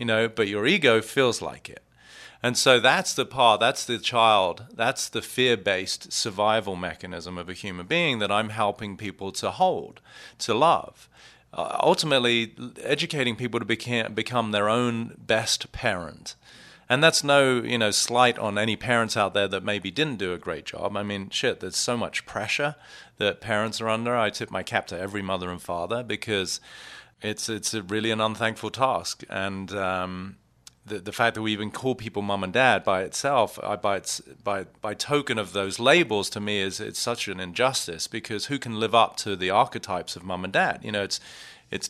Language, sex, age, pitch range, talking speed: English, male, 40-59, 100-125 Hz, 195 wpm